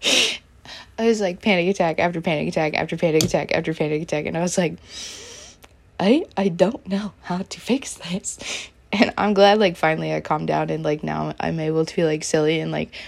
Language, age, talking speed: English, 20-39, 205 wpm